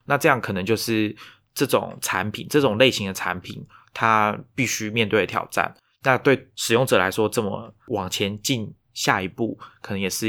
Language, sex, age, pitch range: Chinese, male, 20-39, 105-120 Hz